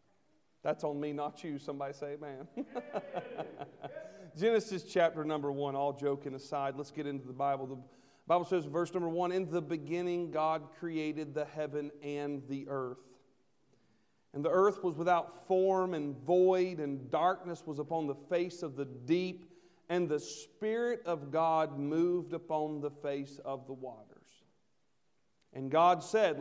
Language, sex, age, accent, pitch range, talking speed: English, male, 40-59, American, 145-175 Hz, 155 wpm